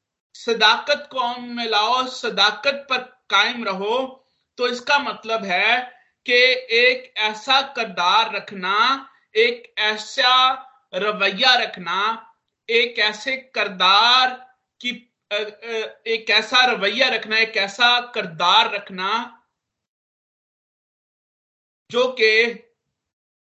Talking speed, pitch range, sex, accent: 80 wpm, 175-240 Hz, male, native